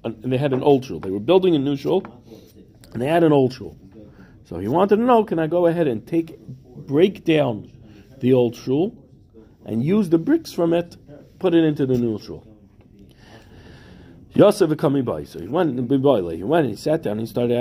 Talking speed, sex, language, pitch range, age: 210 wpm, male, English, 120-170 Hz, 50-69